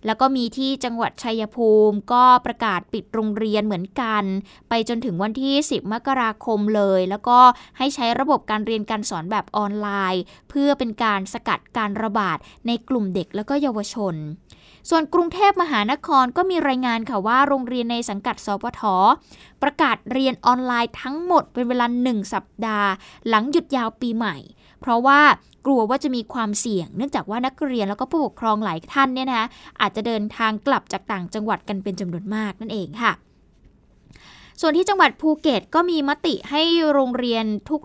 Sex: female